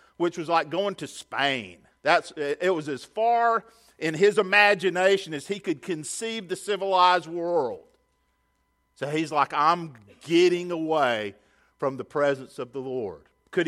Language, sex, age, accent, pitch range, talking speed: English, male, 50-69, American, 150-210 Hz, 150 wpm